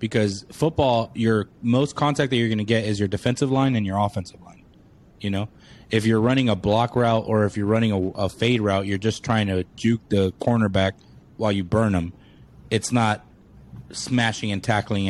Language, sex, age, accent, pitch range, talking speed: English, male, 20-39, American, 105-125 Hz, 200 wpm